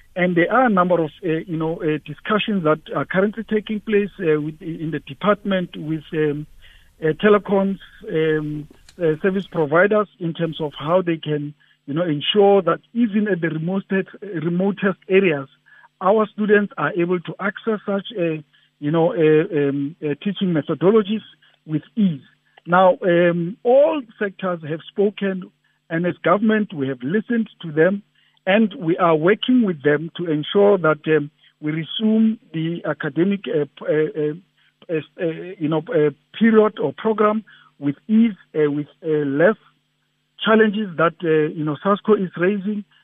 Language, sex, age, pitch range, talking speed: English, male, 50-69, 155-200 Hz, 160 wpm